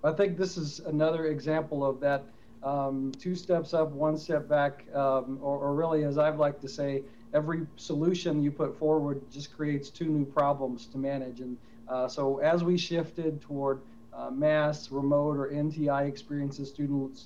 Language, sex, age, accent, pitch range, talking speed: English, male, 40-59, American, 135-150 Hz, 175 wpm